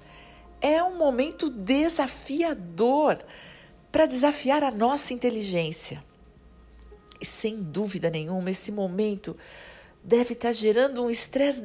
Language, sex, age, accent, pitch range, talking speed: Portuguese, female, 50-69, Brazilian, 165-235 Hz, 105 wpm